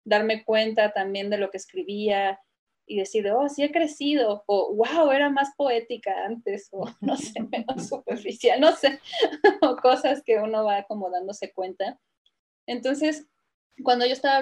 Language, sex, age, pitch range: Spanish, female, 20-39, 195-245 Hz